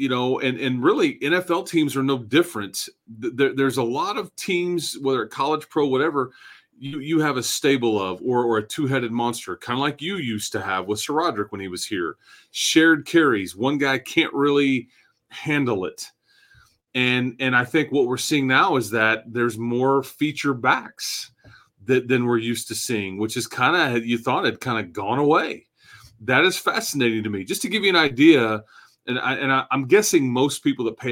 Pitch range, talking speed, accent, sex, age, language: 120-150 Hz, 200 wpm, American, male, 30-49, English